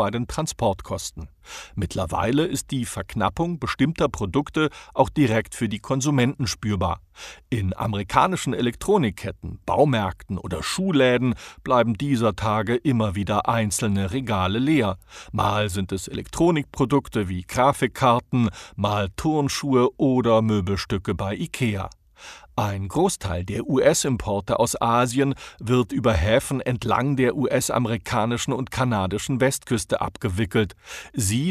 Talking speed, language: 110 wpm, German